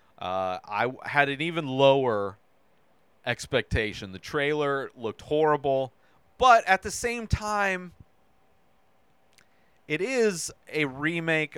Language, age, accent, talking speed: English, 30-49, American, 105 wpm